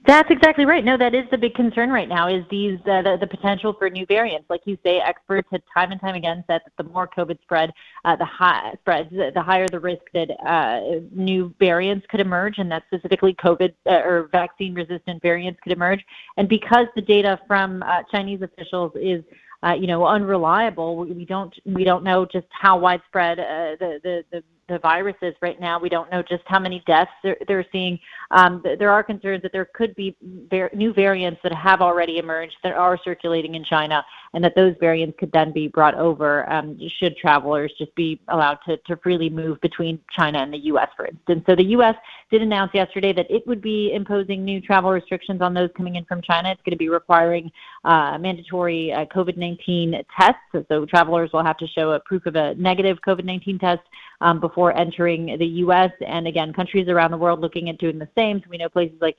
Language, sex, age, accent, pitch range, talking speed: English, female, 30-49, American, 170-190 Hz, 210 wpm